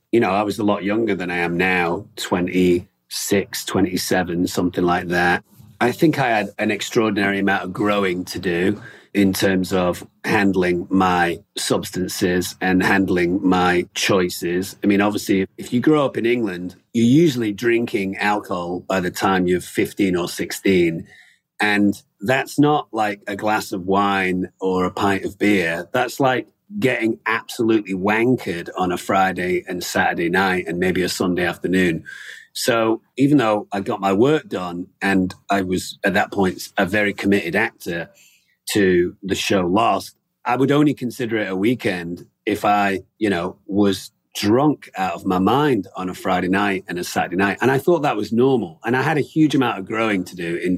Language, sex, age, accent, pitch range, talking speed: English, male, 40-59, British, 90-110 Hz, 175 wpm